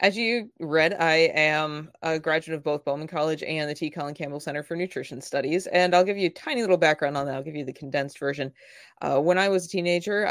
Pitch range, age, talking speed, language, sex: 145-180 Hz, 20-39, 245 wpm, English, female